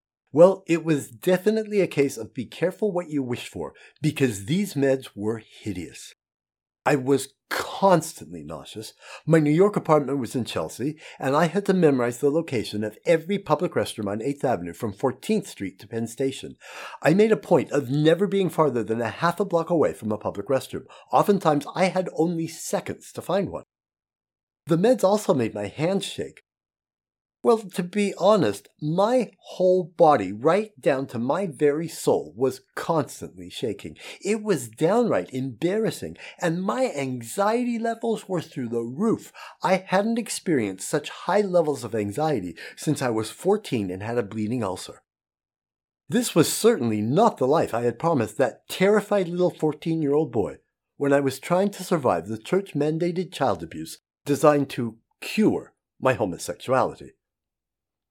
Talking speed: 160 wpm